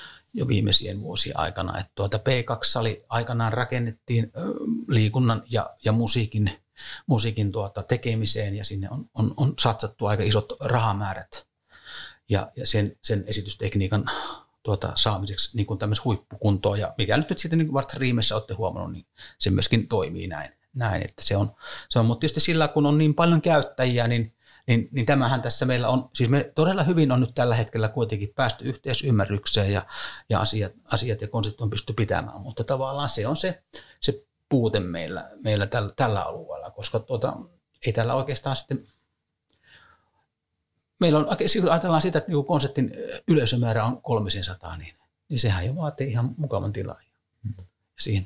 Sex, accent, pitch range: male, native, 105-130 Hz